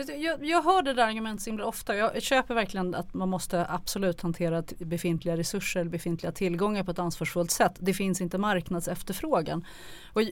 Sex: female